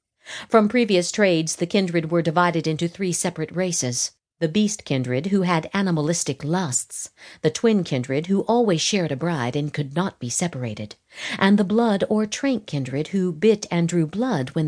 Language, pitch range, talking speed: English, 155-205 Hz, 170 wpm